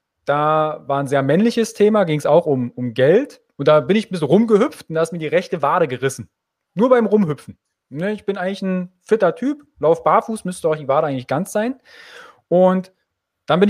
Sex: male